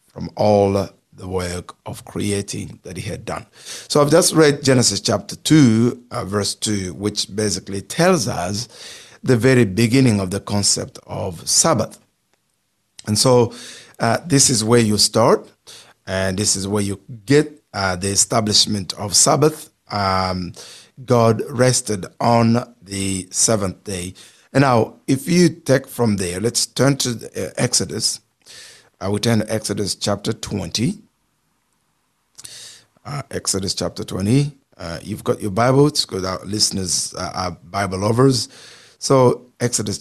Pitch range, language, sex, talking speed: 95-120 Hz, English, male, 140 wpm